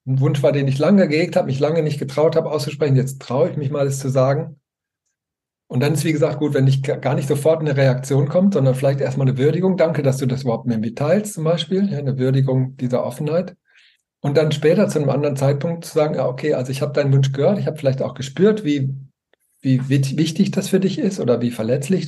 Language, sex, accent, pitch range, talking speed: German, male, German, 130-165 Hz, 235 wpm